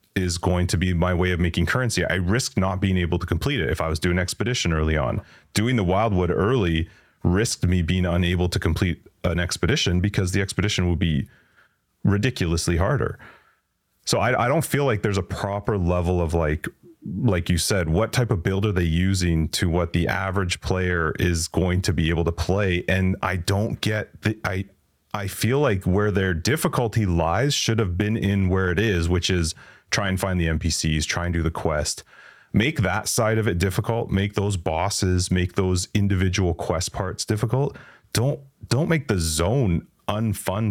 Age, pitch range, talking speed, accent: 30-49, 90-115 Hz, 190 wpm, American